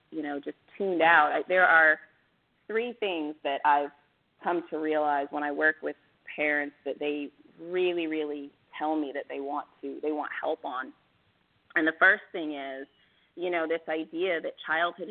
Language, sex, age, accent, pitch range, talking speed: English, female, 30-49, American, 145-170 Hz, 175 wpm